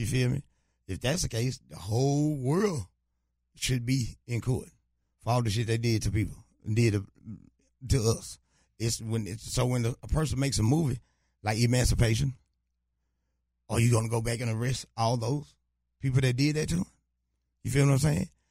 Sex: male